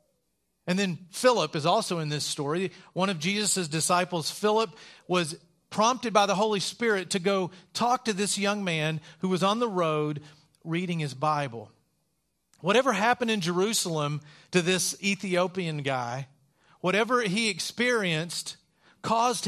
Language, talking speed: English, 140 wpm